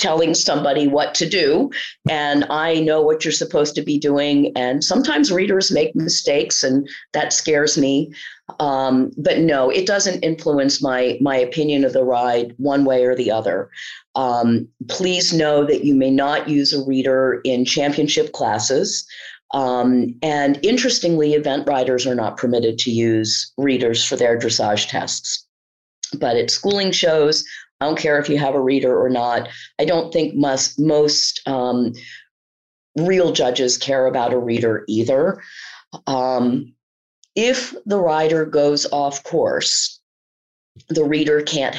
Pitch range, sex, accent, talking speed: 125-150 Hz, female, American, 150 wpm